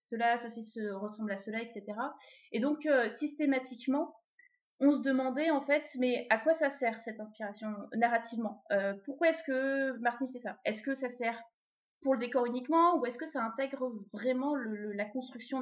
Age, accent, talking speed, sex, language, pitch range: 20-39, French, 190 wpm, female, French, 215-275 Hz